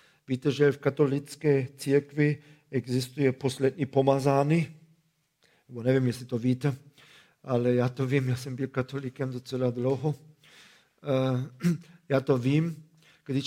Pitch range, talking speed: 130-150 Hz, 115 wpm